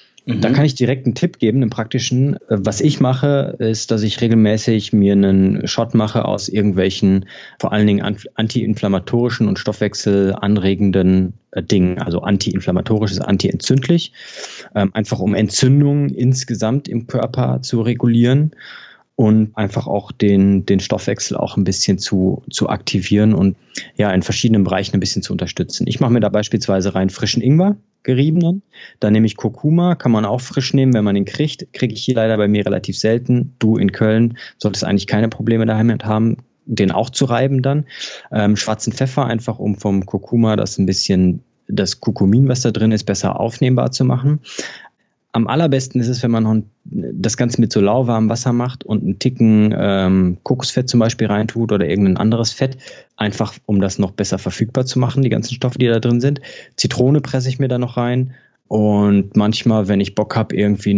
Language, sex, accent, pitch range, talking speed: German, male, German, 100-125 Hz, 175 wpm